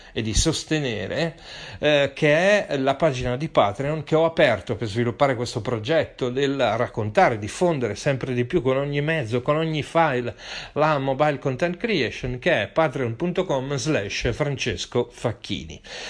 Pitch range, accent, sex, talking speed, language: 125-160 Hz, native, male, 145 wpm, Italian